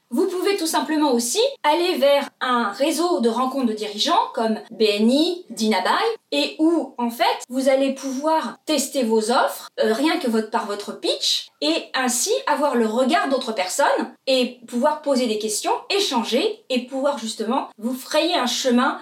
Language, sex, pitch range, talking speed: English, female, 245-315 Hz, 165 wpm